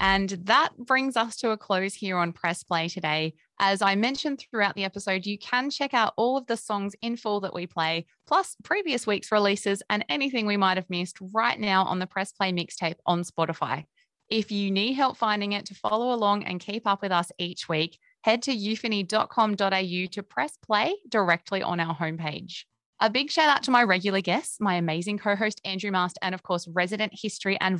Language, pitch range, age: English, 180-225 Hz, 20-39